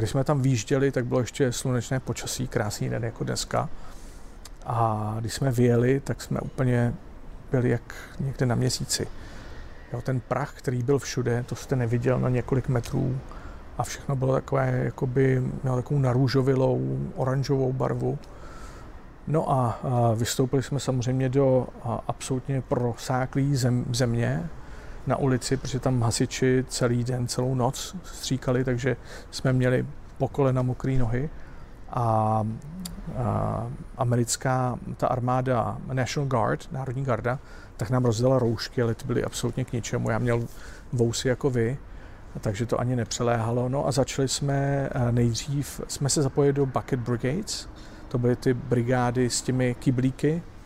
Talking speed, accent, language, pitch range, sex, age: 135 wpm, native, Czech, 120-135 Hz, male, 40-59